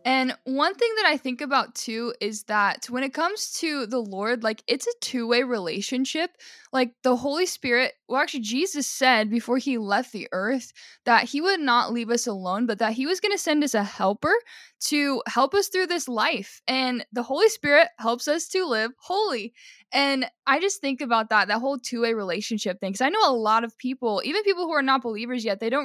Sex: female